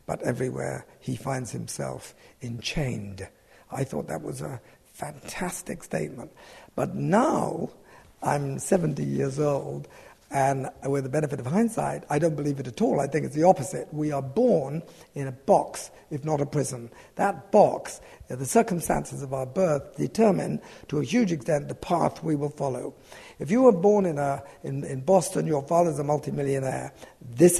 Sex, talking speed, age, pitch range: male, 165 wpm, 60-79, 135-170 Hz